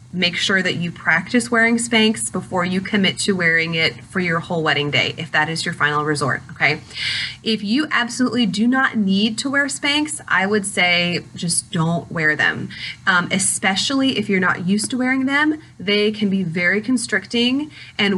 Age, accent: 30-49, American